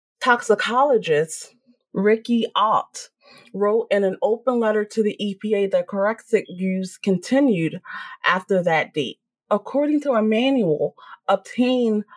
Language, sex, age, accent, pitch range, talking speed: English, female, 30-49, American, 195-260 Hz, 115 wpm